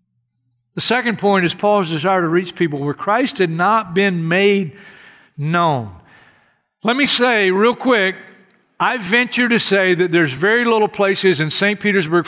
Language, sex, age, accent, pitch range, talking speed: English, male, 50-69, American, 150-205 Hz, 160 wpm